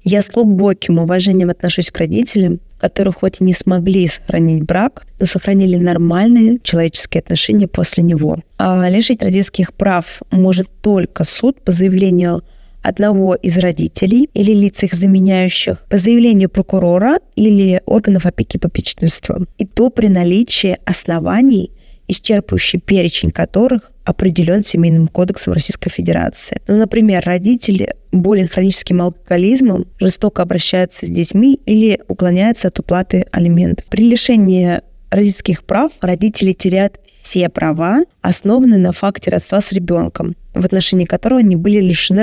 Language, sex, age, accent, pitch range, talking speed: Russian, female, 20-39, native, 180-215 Hz, 130 wpm